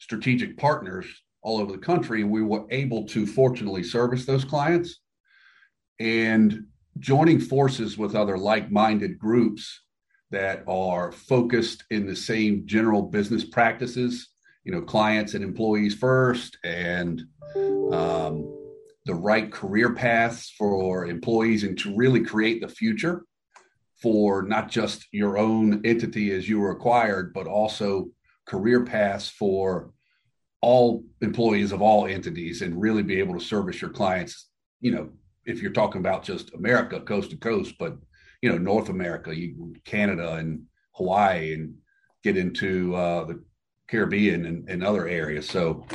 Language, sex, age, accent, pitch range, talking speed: English, male, 50-69, American, 100-120 Hz, 140 wpm